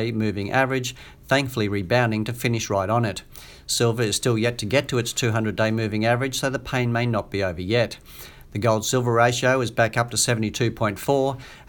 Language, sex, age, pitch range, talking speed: English, male, 50-69, 110-130 Hz, 190 wpm